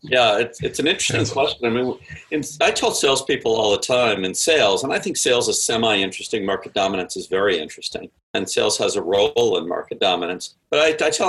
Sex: male